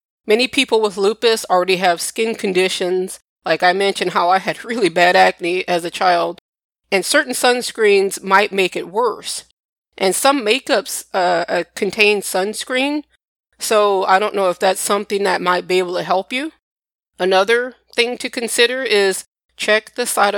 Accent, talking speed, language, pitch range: American, 165 wpm, English, 185-225 Hz